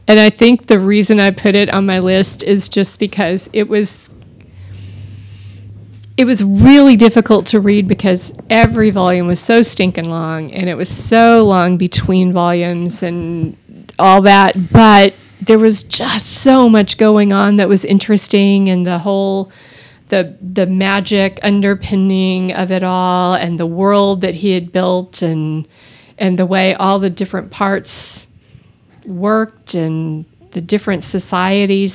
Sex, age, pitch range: female, 40-59, 175-210 Hz